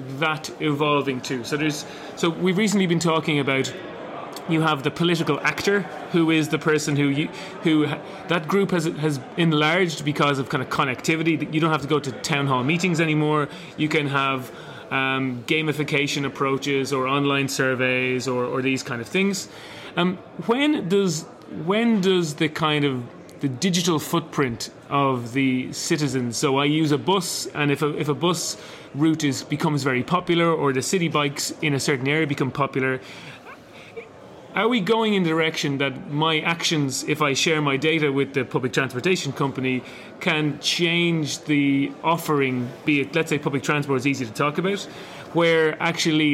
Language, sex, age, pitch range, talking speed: English, male, 30-49, 140-165 Hz, 170 wpm